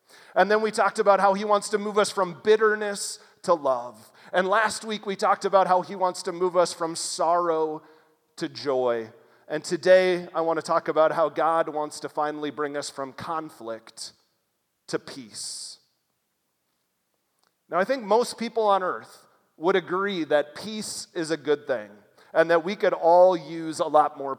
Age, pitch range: 40-59, 160-215 Hz